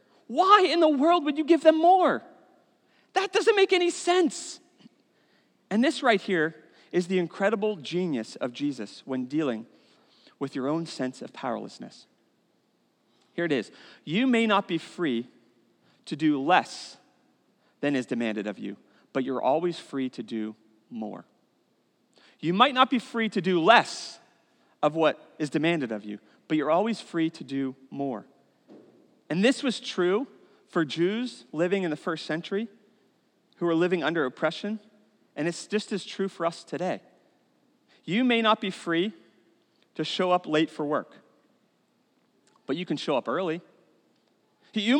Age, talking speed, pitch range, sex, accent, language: 40-59, 155 wpm, 155-250 Hz, male, American, English